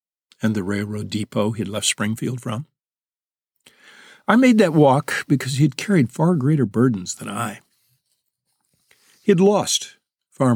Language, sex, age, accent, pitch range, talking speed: English, male, 60-79, American, 110-145 Hz, 140 wpm